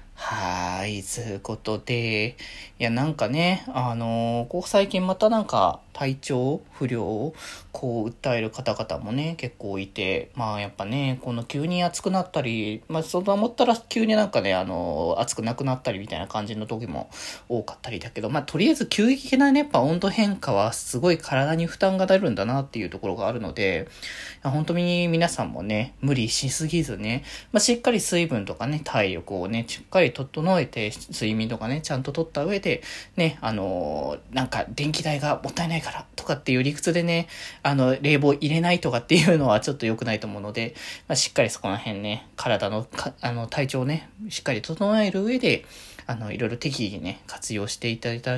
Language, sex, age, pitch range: Japanese, male, 20-39, 115-160 Hz